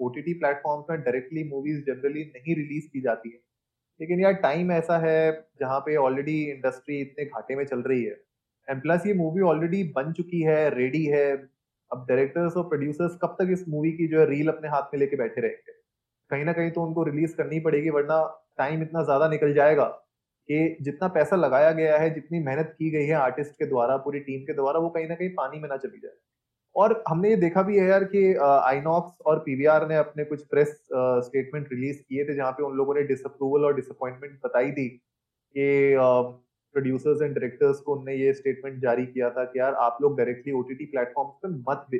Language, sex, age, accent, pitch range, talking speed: Hindi, male, 20-39, native, 135-165 Hz, 180 wpm